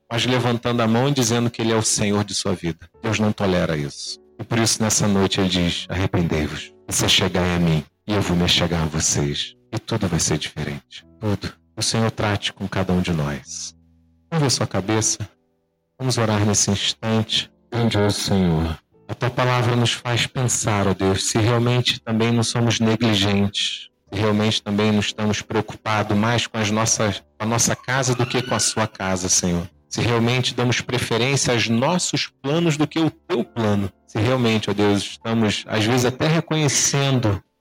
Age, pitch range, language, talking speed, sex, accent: 40-59, 100-115 Hz, Portuguese, 185 wpm, male, Brazilian